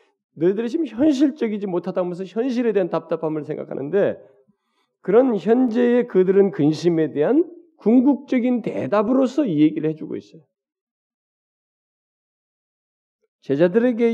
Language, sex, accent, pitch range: Korean, male, native, 150-235 Hz